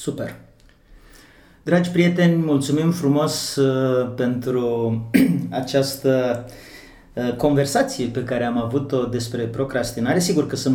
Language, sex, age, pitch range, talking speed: Romanian, male, 30-49, 115-130 Hz, 95 wpm